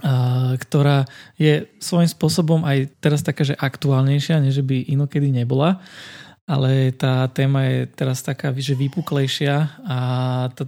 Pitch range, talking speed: 130-150 Hz, 130 wpm